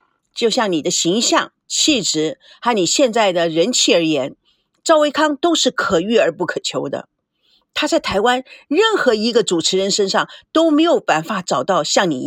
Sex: female